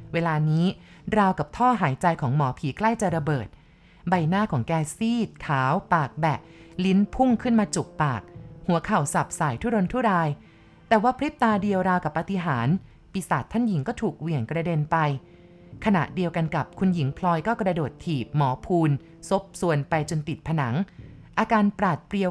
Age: 30-49